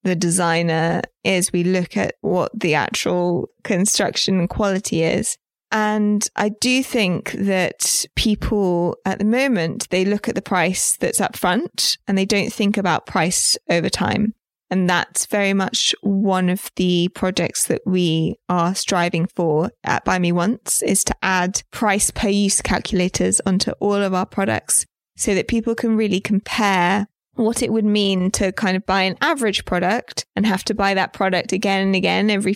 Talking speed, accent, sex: 170 wpm, British, female